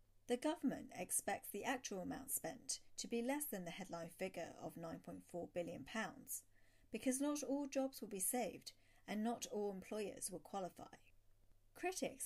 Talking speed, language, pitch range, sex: 150 wpm, English, 175-245 Hz, female